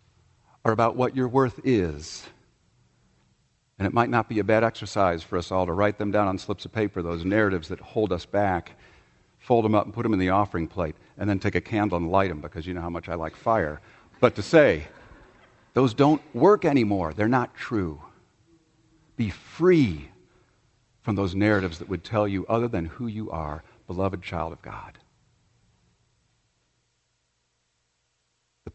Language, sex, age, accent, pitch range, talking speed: English, male, 50-69, American, 90-120 Hz, 180 wpm